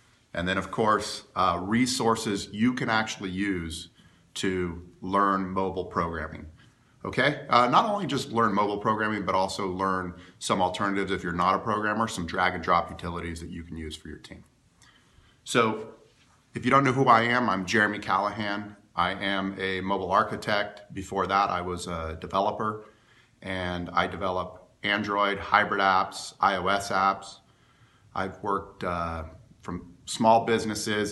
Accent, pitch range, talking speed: American, 90-110 Hz, 150 wpm